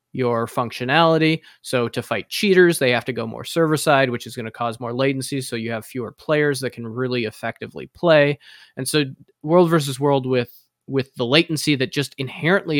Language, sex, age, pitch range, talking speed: English, male, 20-39, 120-145 Hz, 195 wpm